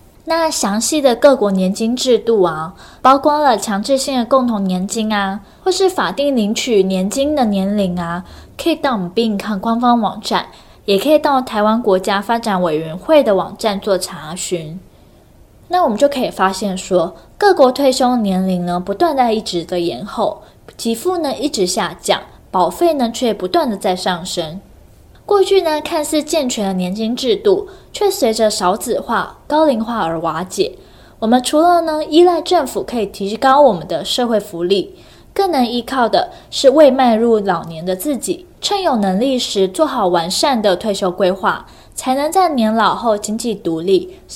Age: 10-29